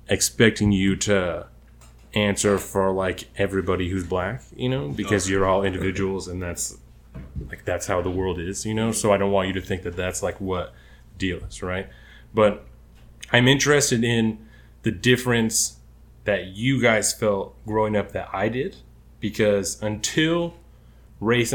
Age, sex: 20-39, male